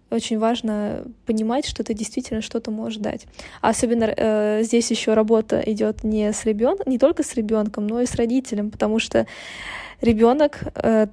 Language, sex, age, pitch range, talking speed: Russian, female, 20-39, 220-245 Hz, 150 wpm